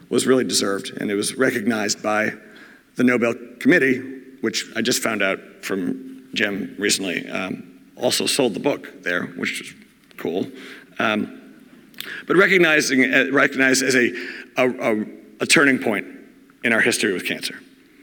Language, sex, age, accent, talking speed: English, male, 50-69, American, 145 wpm